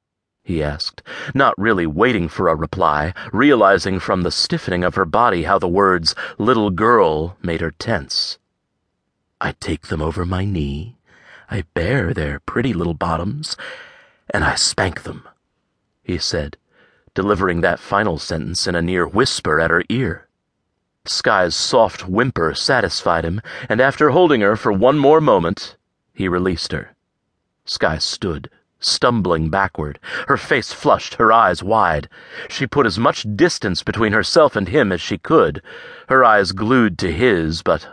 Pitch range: 85-145 Hz